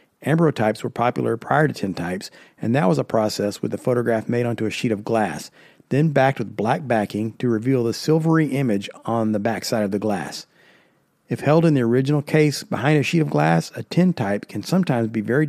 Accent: American